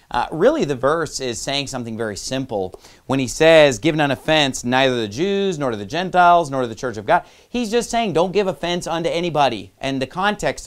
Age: 30-49